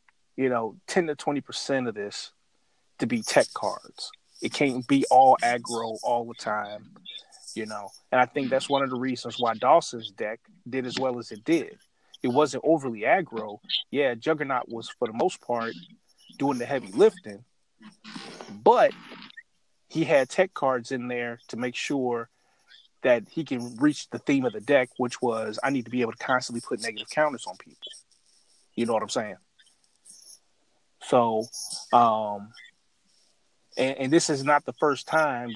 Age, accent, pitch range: 30-49, American, 115-140 Hz